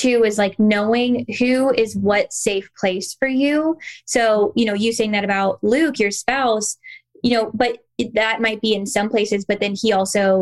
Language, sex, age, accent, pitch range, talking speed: English, female, 10-29, American, 205-240 Hz, 195 wpm